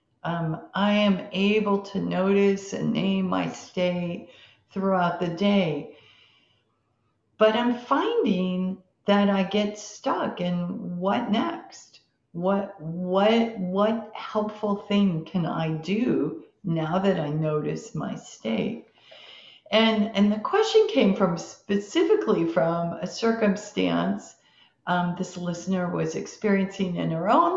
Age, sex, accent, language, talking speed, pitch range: 50-69, female, American, English, 120 wpm, 160-200 Hz